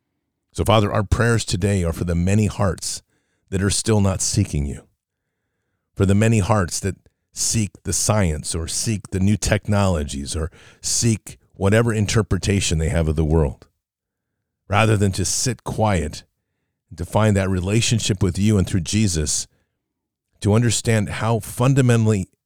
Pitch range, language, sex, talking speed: 90-110 Hz, English, male, 150 wpm